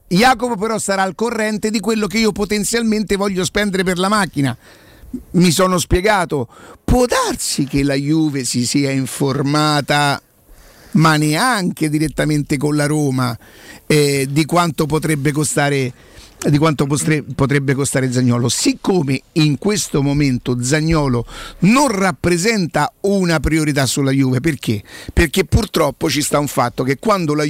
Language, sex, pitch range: Italian, male, 145-170 Hz